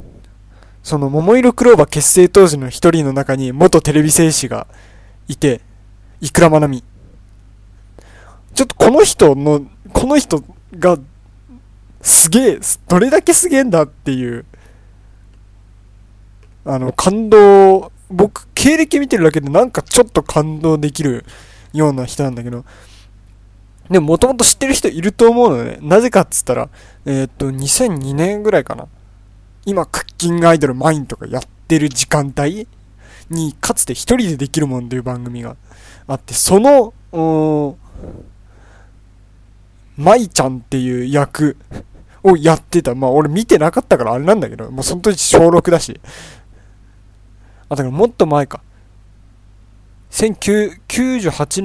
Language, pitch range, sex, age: Japanese, 100-165 Hz, male, 20-39